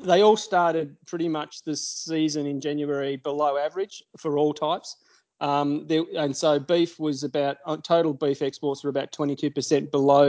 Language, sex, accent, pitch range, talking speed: English, male, Australian, 140-160 Hz, 175 wpm